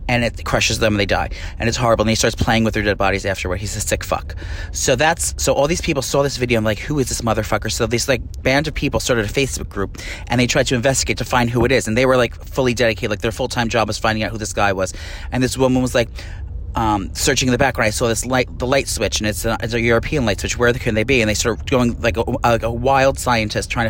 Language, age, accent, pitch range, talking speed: English, 30-49, American, 105-145 Hz, 285 wpm